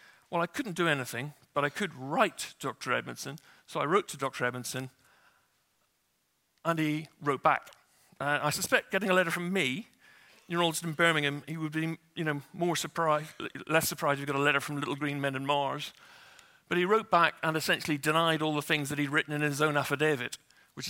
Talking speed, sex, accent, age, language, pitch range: 200 wpm, male, British, 50-69, English, 145-170 Hz